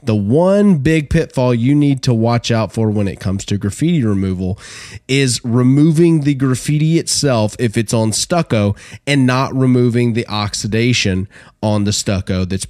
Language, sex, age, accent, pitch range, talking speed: English, male, 30-49, American, 105-135 Hz, 160 wpm